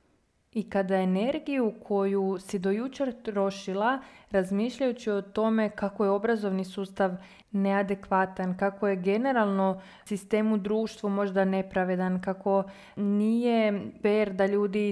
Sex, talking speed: female, 110 wpm